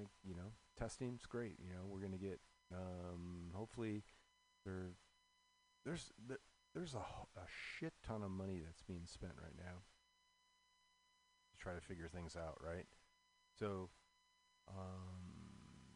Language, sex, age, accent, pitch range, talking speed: English, male, 30-49, American, 90-125 Hz, 130 wpm